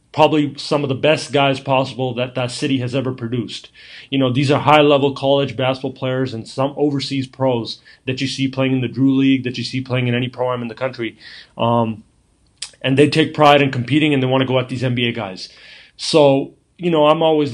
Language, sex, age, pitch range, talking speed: English, male, 30-49, 125-145 Hz, 220 wpm